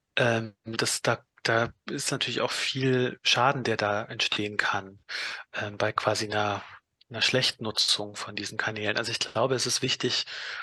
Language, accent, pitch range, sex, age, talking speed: English, German, 110-135 Hz, male, 30-49, 160 wpm